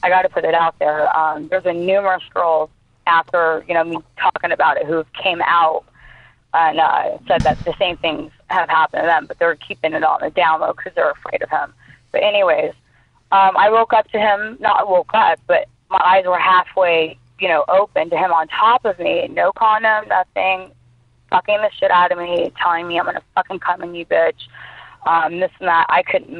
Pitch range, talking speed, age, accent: 165-205 Hz, 220 wpm, 20-39, American